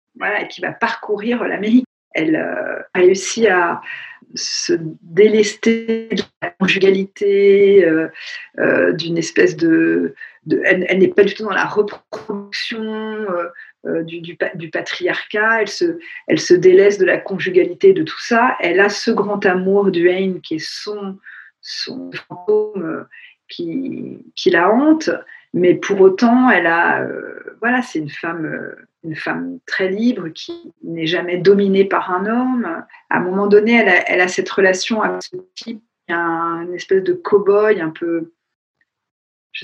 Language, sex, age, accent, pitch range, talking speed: French, female, 50-69, French, 180-250 Hz, 165 wpm